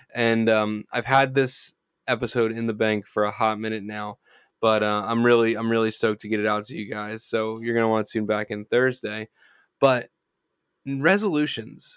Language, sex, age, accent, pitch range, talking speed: English, male, 10-29, American, 110-130 Hz, 200 wpm